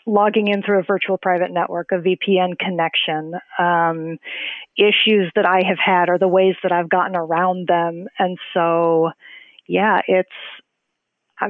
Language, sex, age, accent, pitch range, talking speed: English, female, 40-59, American, 180-230 Hz, 150 wpm